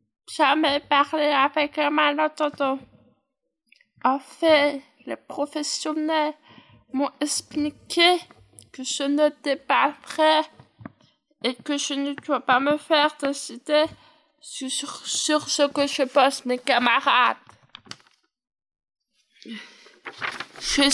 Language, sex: French, female